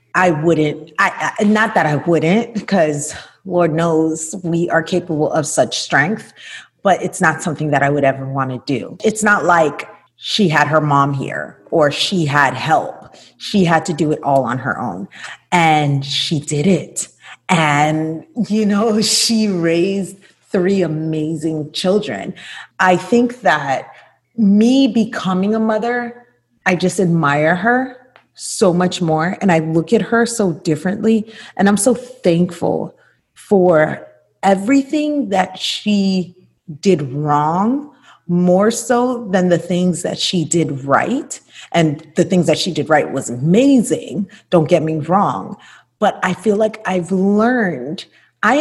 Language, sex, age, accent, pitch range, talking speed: English, female, 30-49, American, 155-210 Hz, 145 wpm